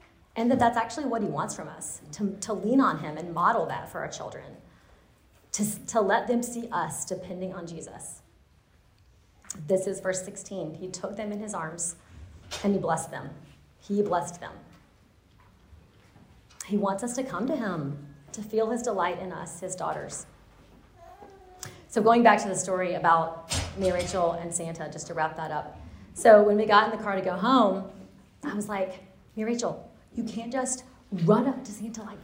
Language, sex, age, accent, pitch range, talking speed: English, female, 30-49, American, 170-225 Hz, 190 wpm